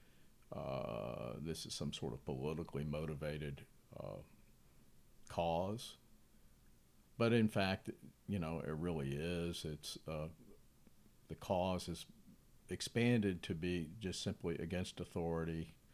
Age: 50-69